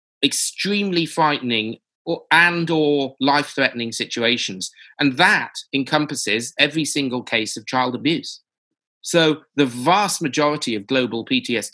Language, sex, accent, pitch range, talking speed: English, male, British, 115-145 Hz, 110 wpm